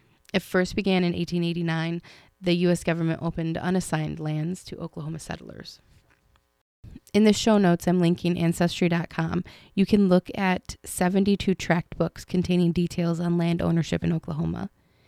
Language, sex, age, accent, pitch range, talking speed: English, female, 20-39, American, 165-180 Hz, 140 wpm